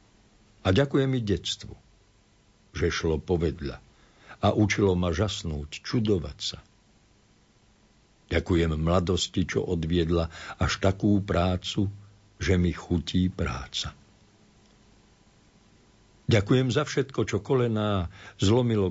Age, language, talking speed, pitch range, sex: 60-79, Slovak, 95 wpm, 80-100 Hz, male